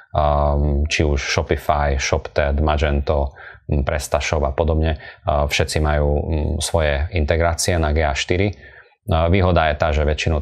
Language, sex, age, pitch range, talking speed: Slovak, male, 30-49, 75-85 Hz, 110 wpm